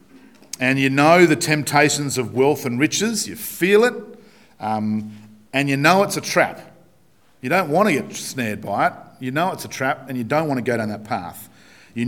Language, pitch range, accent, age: English, 115-155 Hz, Australian, 40-59